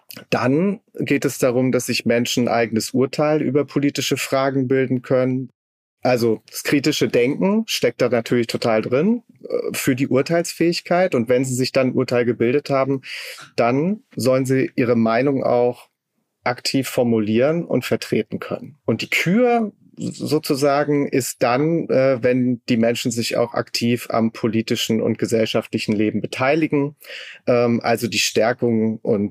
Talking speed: 145 wpm